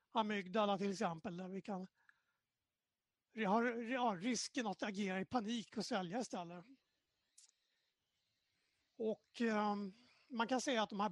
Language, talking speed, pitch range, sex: English, 130 wpm, 190-225 Hz, male